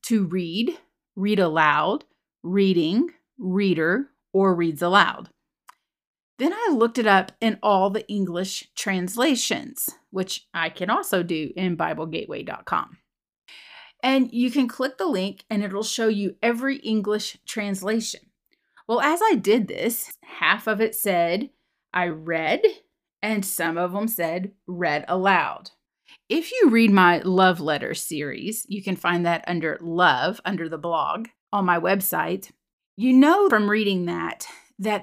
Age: 30-49